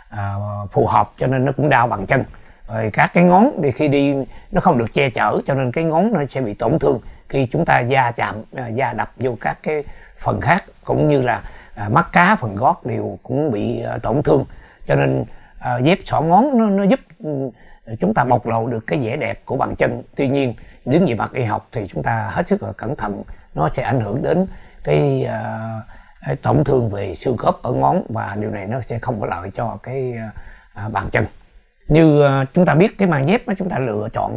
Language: Vietnamese